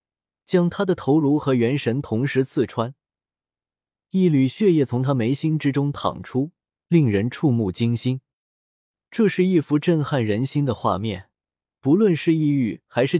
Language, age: Chinese, 20-39